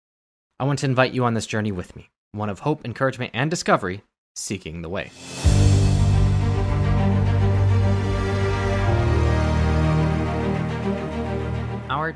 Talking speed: 100 wpm